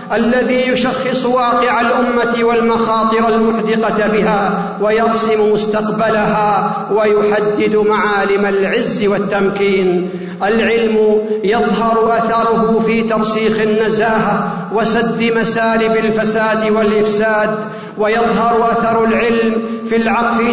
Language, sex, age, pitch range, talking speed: Arabic, male, 50-69, 210-230 Hz, 80 wpm